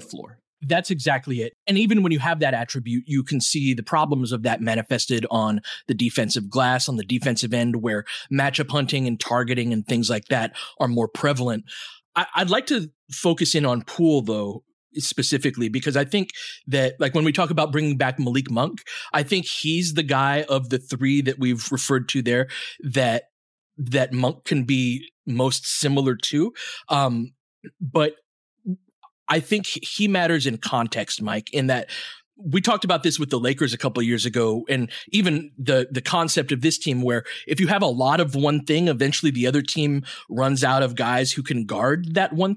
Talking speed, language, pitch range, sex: 190 wpm, English, 125-165 Hz, male